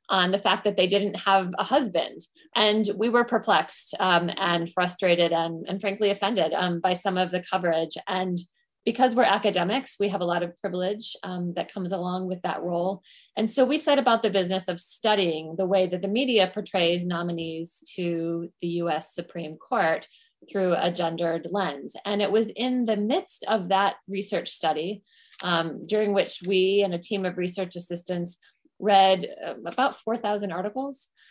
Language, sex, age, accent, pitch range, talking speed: English, female, 20-39, American, 180-215 Hz, 175 wpm